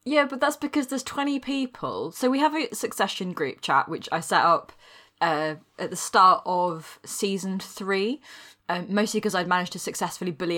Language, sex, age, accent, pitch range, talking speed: English, female, 20-39, British, 155-195 Hz, 185 wpm